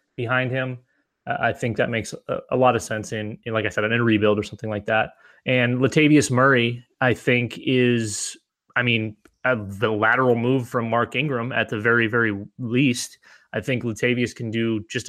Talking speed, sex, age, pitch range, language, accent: 185 wpm, male, 20-39, 110-130 Hz, English, American